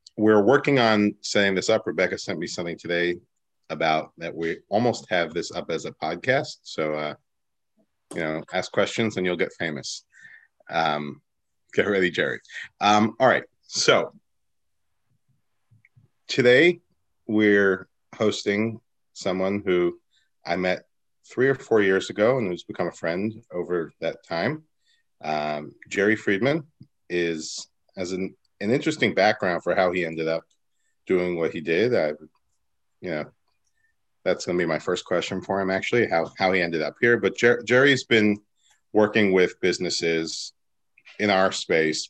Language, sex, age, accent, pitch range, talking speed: English, male, 40-59, American, 85-115 Hz, 155 wpm